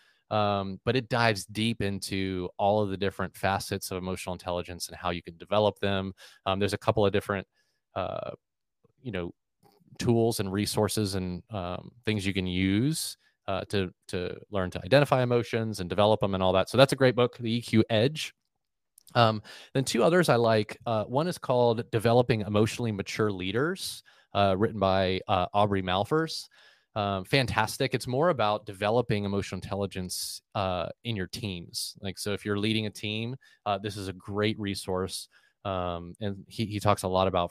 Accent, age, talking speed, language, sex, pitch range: American, 30-49, 180 wpm, English, male, 95-110 Hz